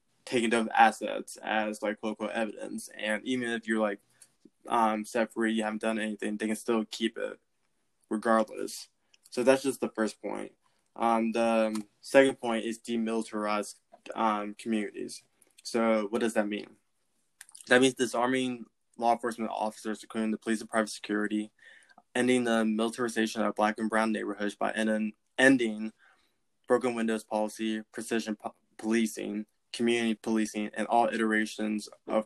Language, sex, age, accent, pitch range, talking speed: English, male, 20-39, American, 105-115 Hz, 145 wpm